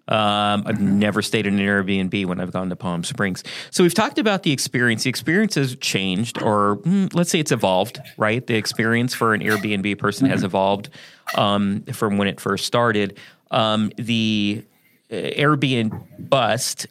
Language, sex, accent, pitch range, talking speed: English, male, American, 105-140 Hz, 175 wpm